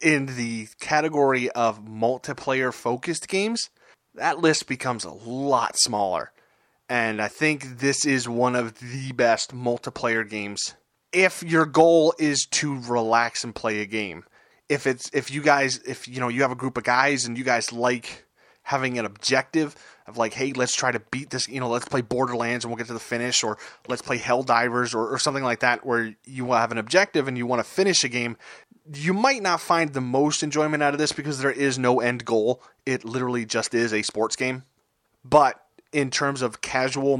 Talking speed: 200 wpm